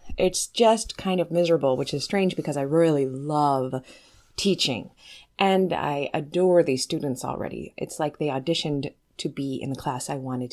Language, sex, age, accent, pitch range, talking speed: English, female, 30-49, American, 140-180 Hz, 170 wpm